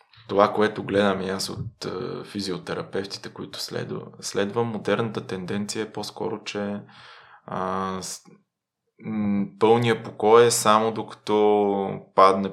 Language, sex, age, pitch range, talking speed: Bulgarian, male, 20-39, 95-110 Hz, 115 wpm